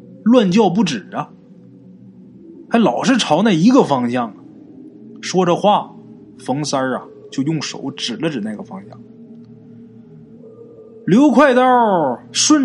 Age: 20-39